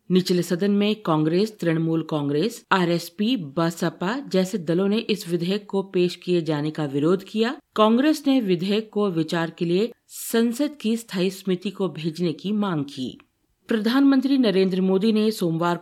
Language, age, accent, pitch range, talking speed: Hindi, 50-69, native, 160-205 Hz, 155 wpm